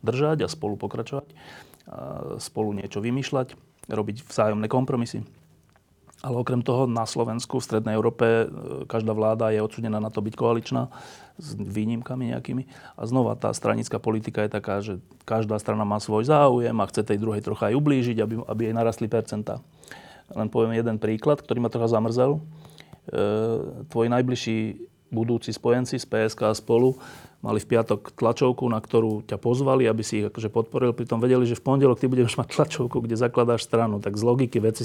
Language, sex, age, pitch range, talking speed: Slovak, male, 30-49, 110-125 Hz, 170 wpm